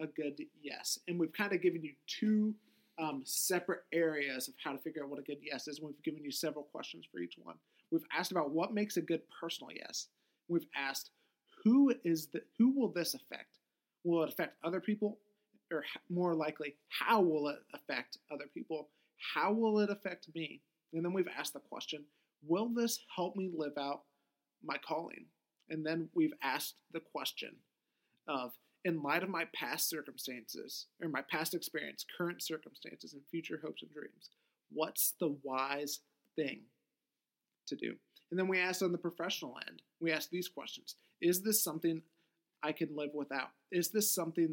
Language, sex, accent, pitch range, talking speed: English, male, American, 150-180 Hz, 180 wpm